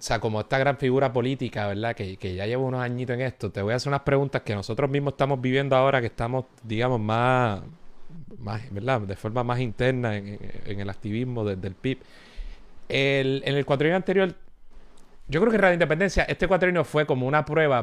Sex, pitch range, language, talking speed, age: male, 115-140 Hz, Spanish, 210 wpm, 30-49